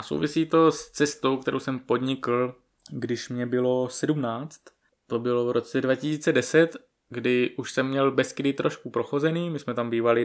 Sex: male